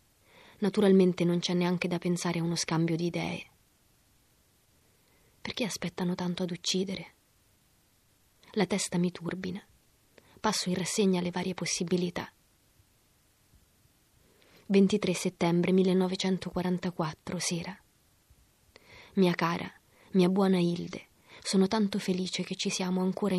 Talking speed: 110 wpm